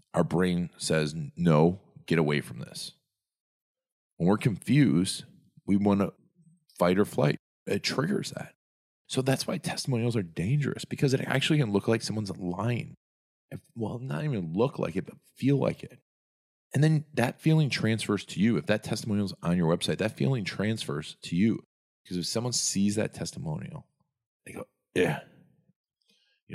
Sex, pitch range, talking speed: male, 85-135 Hz, 165 wpm